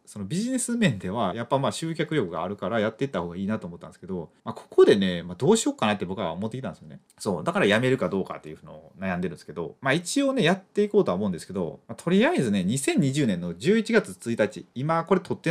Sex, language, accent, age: male, Japanese, native, 30-49